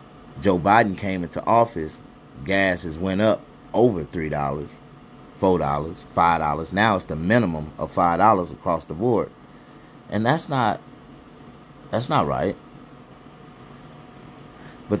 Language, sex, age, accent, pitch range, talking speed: English, male, 30-49, American, 85-100 Hz, 130 wpm